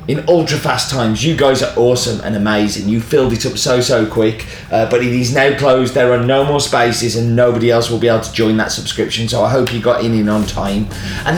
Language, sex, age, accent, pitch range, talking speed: English, male, 30-49, British, 115-160 Hz, 255 wpm